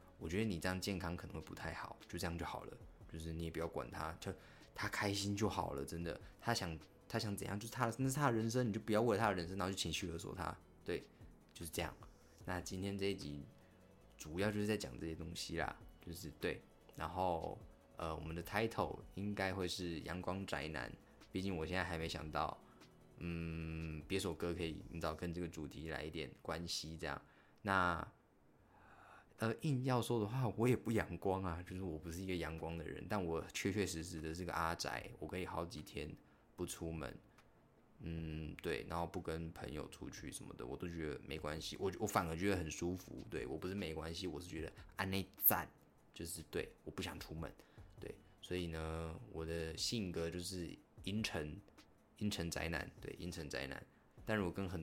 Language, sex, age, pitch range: Chinese, male, 20-39, 80-100 Hz